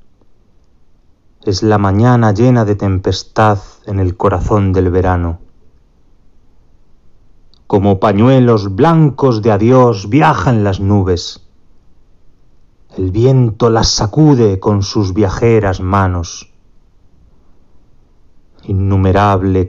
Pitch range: 90-115 Hz